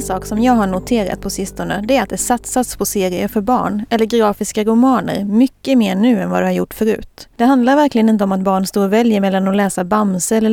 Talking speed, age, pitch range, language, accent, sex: 245 wpm, 30-49, 195-245 Hz, Swedish, native, female